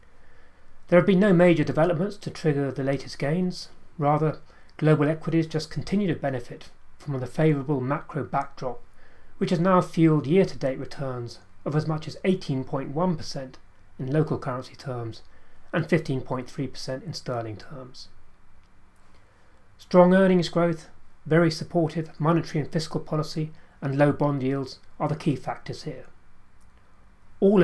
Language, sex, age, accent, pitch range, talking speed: English, male, 30-49, British, 120-165 Hz, 135 wpm